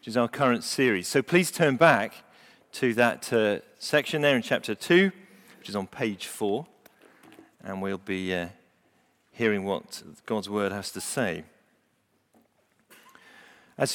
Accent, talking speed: British, 145 wpm